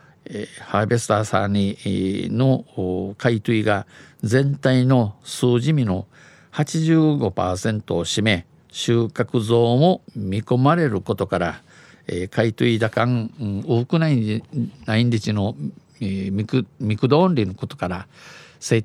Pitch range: 105-140 Hz